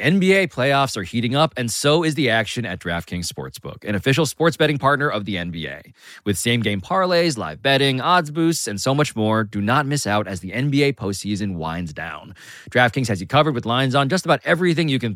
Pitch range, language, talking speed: 100-145 Hz, English, 220 wpm